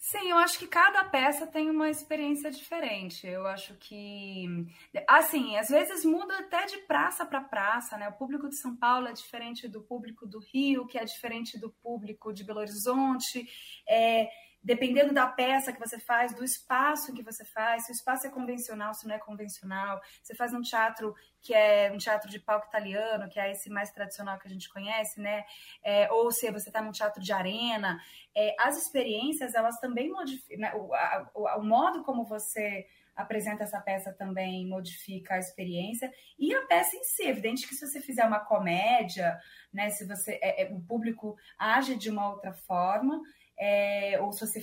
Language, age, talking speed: Portuguese, 20-39, 190 wpm